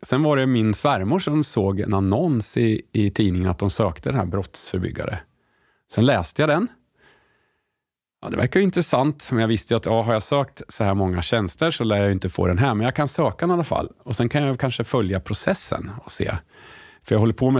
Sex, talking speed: male, 235 wpm